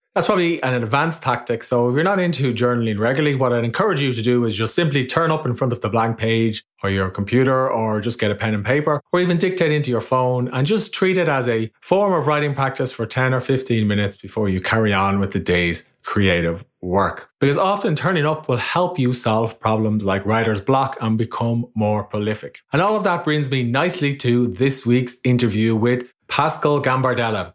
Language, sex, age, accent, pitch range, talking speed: English, male, 30-49, Irish, 115-150 Hz, 215 wpm